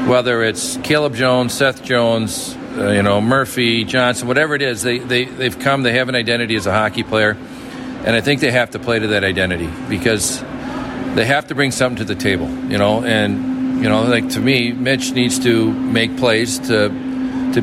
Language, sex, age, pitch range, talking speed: English, male, 50-69, 115-140 Hz, 205 wpm